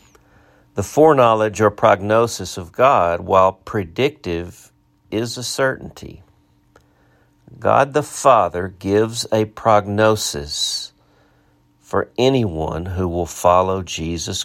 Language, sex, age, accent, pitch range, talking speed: English, male, 50-69, American, 80-110 Hz, 95 wpm